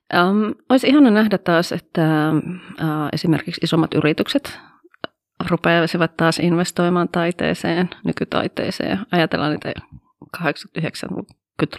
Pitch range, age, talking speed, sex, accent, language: 155-175 Hz, 30-49, 75 wpm, female, native, Finnish